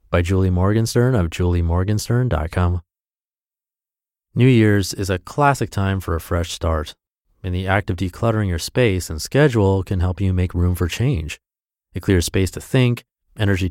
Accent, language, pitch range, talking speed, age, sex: American, English, 90-120 Hz, 160 wpm, 30-49, male